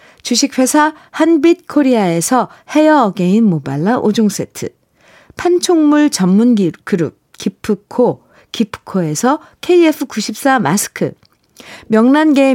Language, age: Korean, 50-69